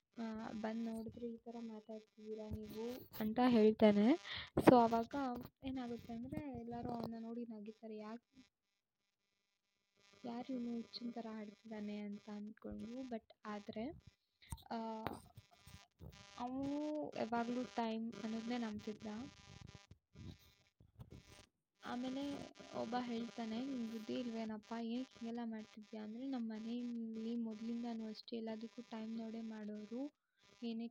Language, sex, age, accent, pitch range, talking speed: Kannada, female, 20-39, native, 215-240 Hz, 95 wpm